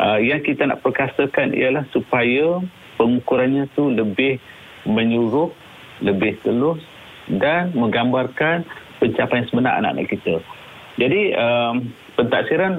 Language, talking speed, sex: Malay, 110 wpm, male